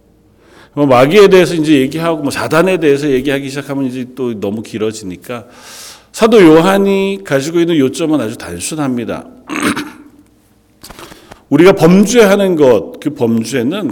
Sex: male